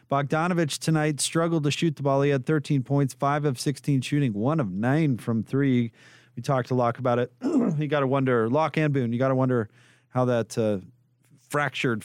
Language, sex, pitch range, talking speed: English, male, 120-145 Hz, 205 wpm